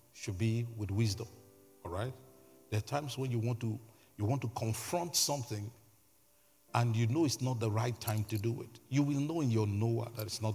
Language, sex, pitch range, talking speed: English, male, 105-140 Hz, 215 wpm